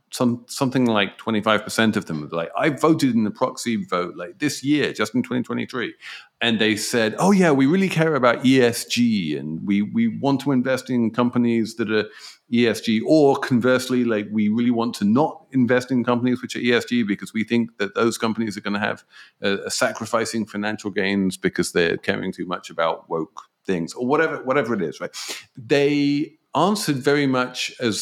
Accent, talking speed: British, 190 wpm